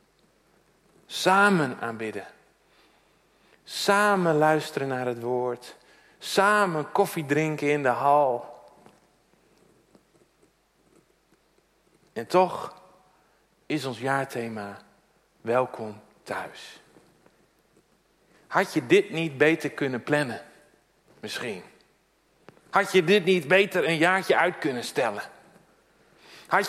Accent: Dutch